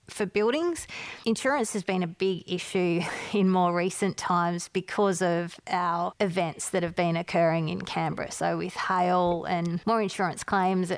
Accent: Australian